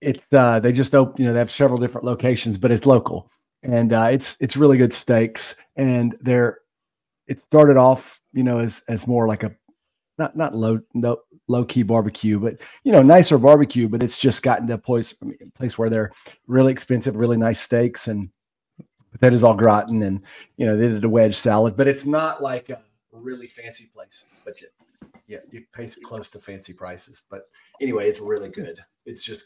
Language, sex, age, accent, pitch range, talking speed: English, male, 40-59, American, 110-125 Hz, 205 wpm